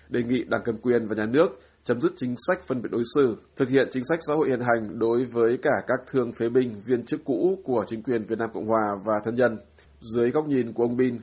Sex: male